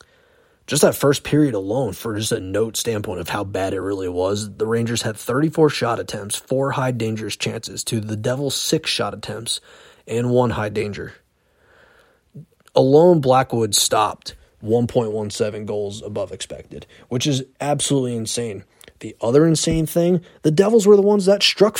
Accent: American